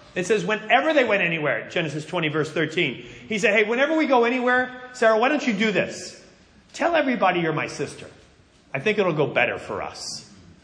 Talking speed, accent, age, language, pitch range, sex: 195 wpm, American, 40-59, English, 175-245 Hz, male